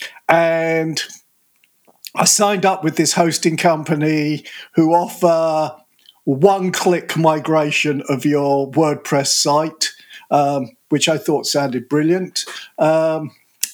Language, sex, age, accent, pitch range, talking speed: English, male, 50-69, British, 140-175 Hz, 100 wpm